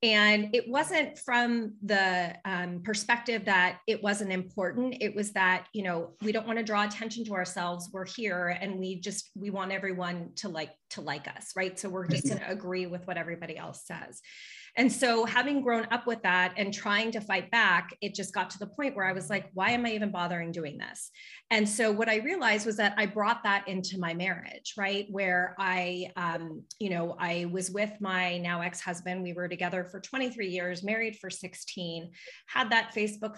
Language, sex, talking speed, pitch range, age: English, female, 205 wpm, 180-220 Hz, 30-49